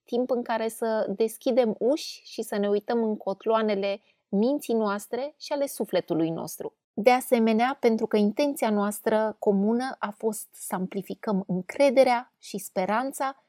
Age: 20-39